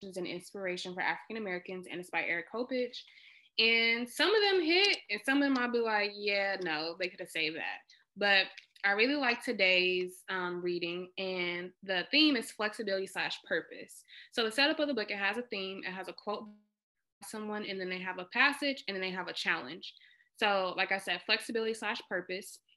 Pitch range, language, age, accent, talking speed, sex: 185-225 Hz, English, 20-39, American, 205 wpm, female